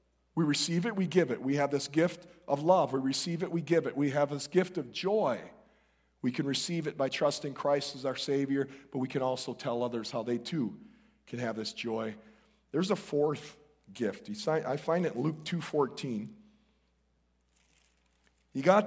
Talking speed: 190 wpm